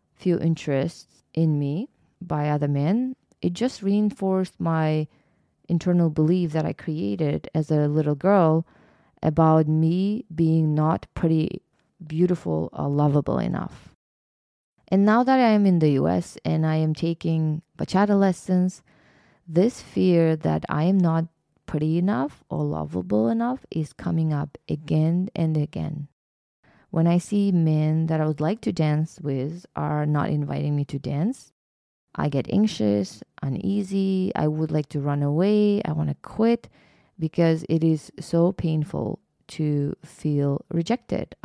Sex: female